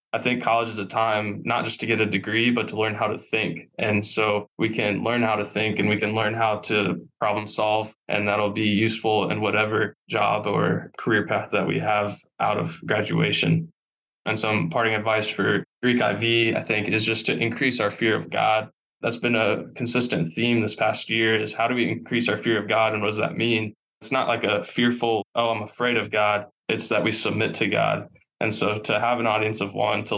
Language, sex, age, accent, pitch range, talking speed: English, male, 20-39, American, 105-115 Hz, 225 wpm